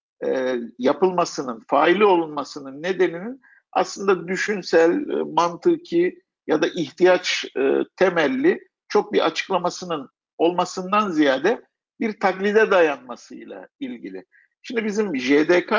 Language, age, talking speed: Turkish, 50-69, 85 wpm